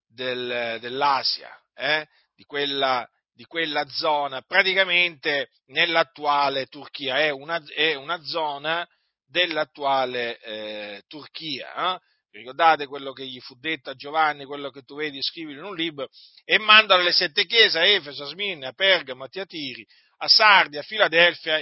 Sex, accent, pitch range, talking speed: male, native, 130-175 Hz, 145 wpm